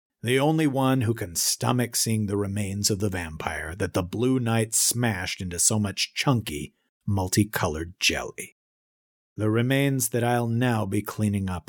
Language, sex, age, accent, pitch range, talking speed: English, male, 40-59, American, 95-120 Hz, 160 wpm